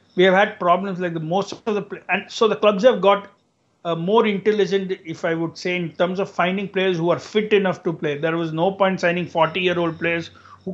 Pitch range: 165-195 Hz